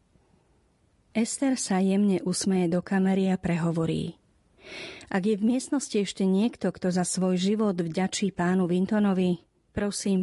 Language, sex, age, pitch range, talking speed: Slovak, female, 40-59, 175-205 Hz, 130 wpm